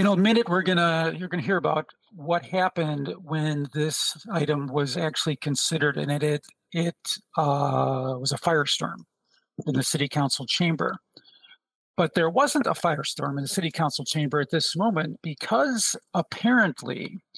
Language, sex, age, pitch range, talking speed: English, male, 50-69, 145-185 Hz, 160 wpm